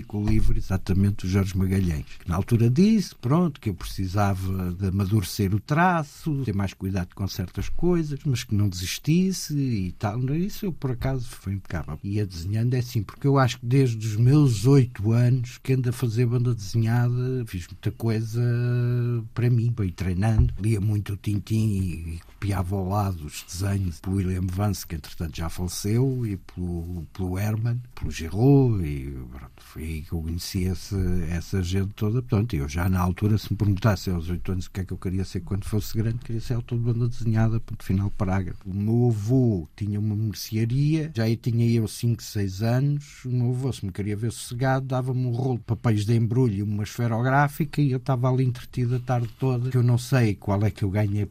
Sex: male